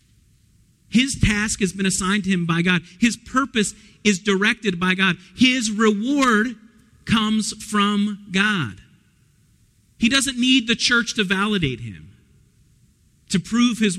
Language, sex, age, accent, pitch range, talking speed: English, male, 40-59, American, 145-200 Hz, 135 wpm